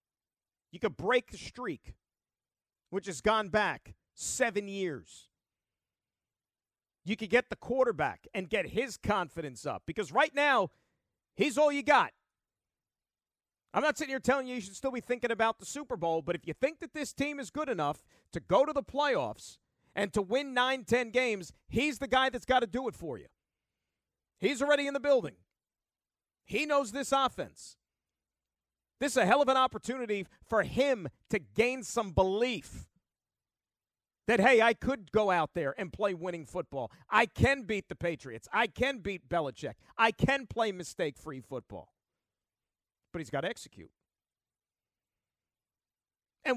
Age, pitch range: 40-59, 190-265 Hz